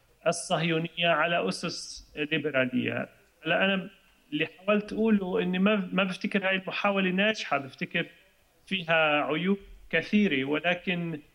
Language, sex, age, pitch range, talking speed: English, male, 30-49, 155-200 Hz, 105 wpm